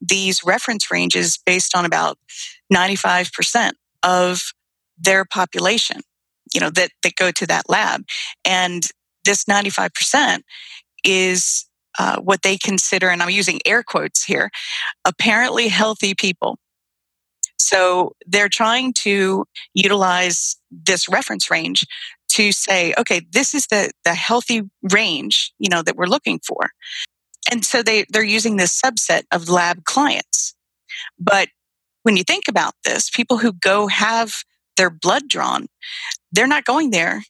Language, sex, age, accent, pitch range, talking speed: English, female, 30-49, American, 180-220 Hz, 135 wpm